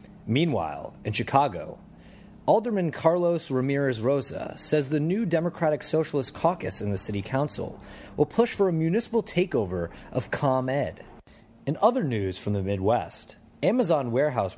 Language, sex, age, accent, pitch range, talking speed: English, male, 30-49, American, 105-175 Hz, 135 wpm